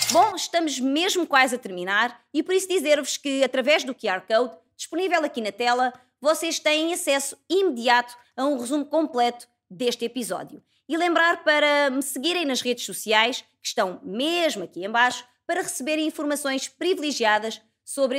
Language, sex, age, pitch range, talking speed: Portuguese, female, 20-39, 230-310 Hz, 160 wpm